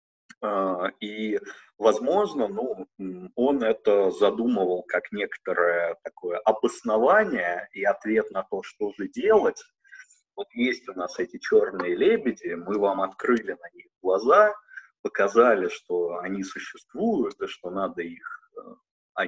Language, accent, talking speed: Russian, native, 120 wpm